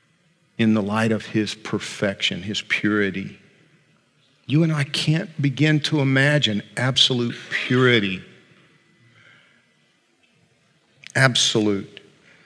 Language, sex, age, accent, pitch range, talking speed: English, male, 50-69, American, 115-145 Hz, 85 wpm